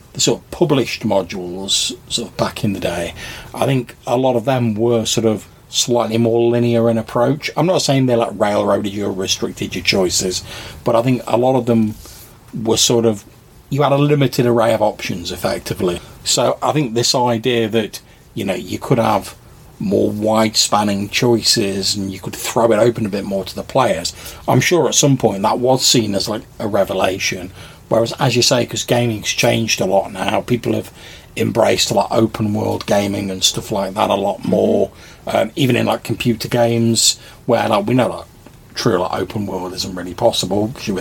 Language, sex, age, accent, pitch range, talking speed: English, male, 40-59, British, 100-120 Hz, 205 wpm